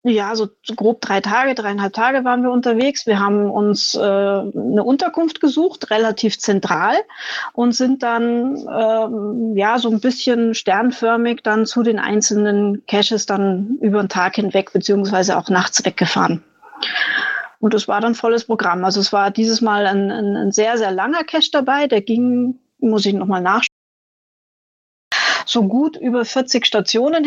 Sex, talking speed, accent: female, 160 wpm, German